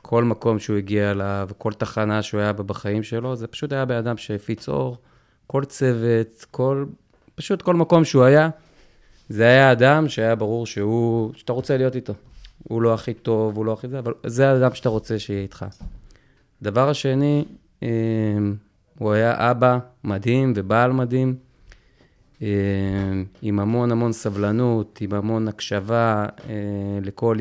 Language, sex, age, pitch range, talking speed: Hebrew, male, 20-39, 105-125 Hz, 145 wpm